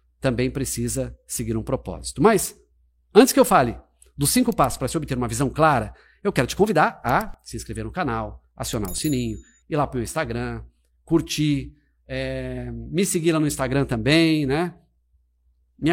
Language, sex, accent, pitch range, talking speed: Portuguese, male, Brazilian, 115-180 Hz, 175 wpm